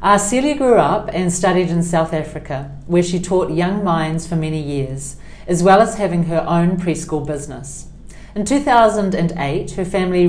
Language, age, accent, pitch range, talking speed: English, 40-59, Australian, 155-185 Hz, 170 wpm